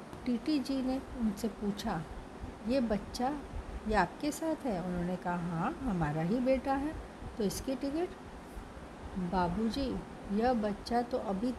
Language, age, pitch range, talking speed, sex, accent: Hindi, 60-79, 195-260 Hz, 135 wpm, female, native